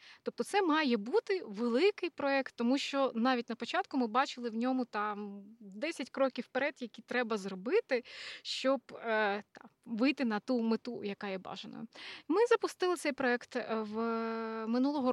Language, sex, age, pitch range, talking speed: Ukrainian, female, 20-39, 220-275 Hz, 150 wpm